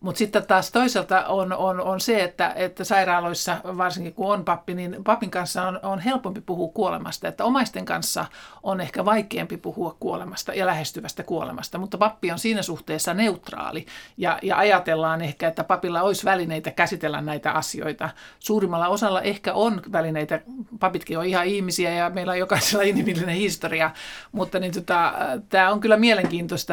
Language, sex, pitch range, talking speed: Finnish, male, 165-195 Hz, 165 wpm